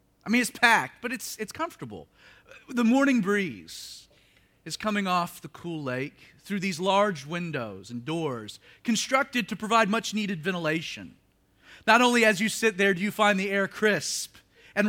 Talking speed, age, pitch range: 165 wpm, 40-59, 130-215 Hz